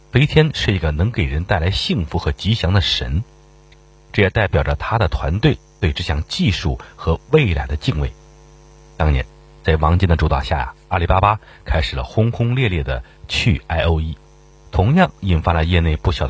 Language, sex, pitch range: Chinese, male, 75-105 Hz